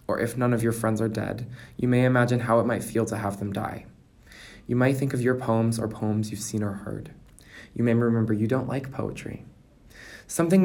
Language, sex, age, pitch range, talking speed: English, male, 20-39, 105-120 Hz, 220 wpm